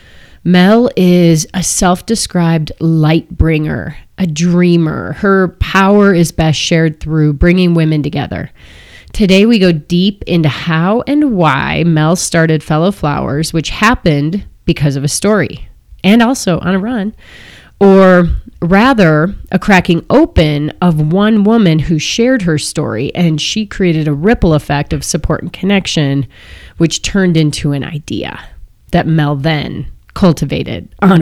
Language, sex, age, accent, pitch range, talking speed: English, female, 30-49, American, 155-195 Hz, 140 wpm